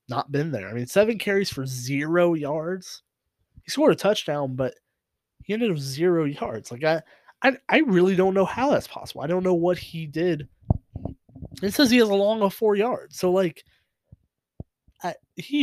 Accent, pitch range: American, 130-175 Hz